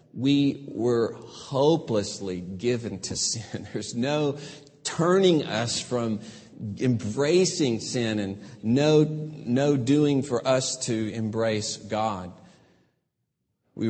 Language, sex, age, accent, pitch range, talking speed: English, male, 50-69, American, 115-165 Hz, 100 wpm